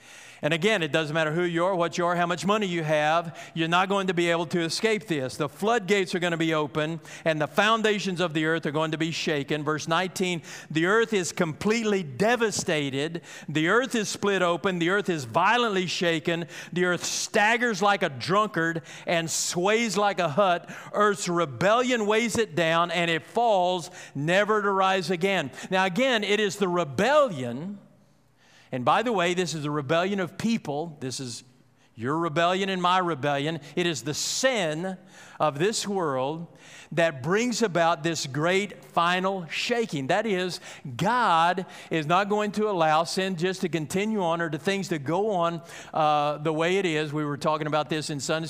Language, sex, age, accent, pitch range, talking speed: English, male, 50-69, American, 155-195 Hz, 185 wpm